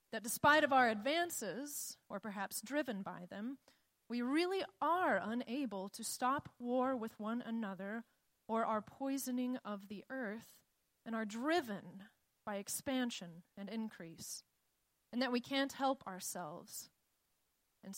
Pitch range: 210-270 Hz